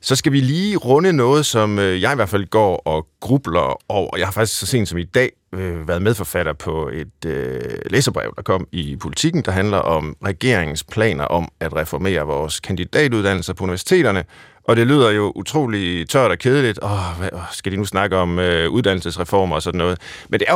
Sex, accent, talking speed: male, native, 190 wpm